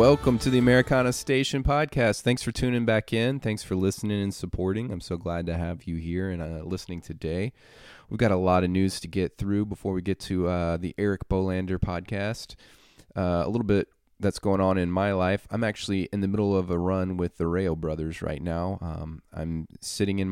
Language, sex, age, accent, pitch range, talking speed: English, male, 30-49, American, 85-100 Hz, 215 wpm